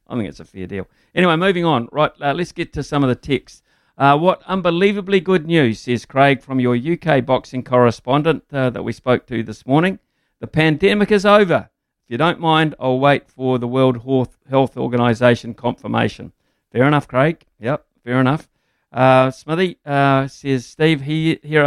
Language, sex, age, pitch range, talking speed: English, male, 50-69, 115-145 Hz, 185 wpm